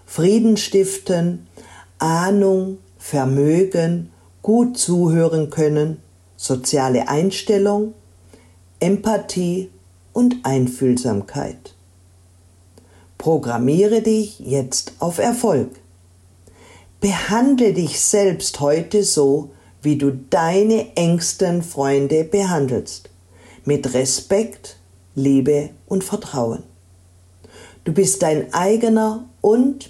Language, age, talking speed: German, 50-69, 75 wpm